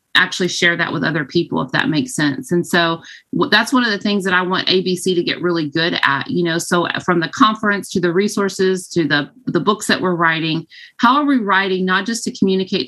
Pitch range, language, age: 170-205 Hz, English, 30-49